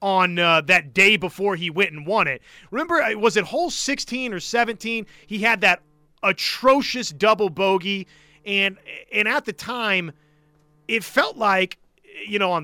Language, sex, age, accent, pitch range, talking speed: English, male, 30-49, American, 170-230 Hz, 160 wpm